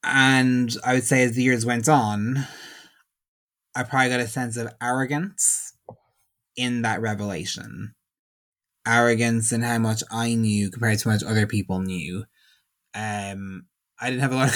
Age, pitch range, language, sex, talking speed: 20-39, 110-125 Hz, English, male, 155 wpm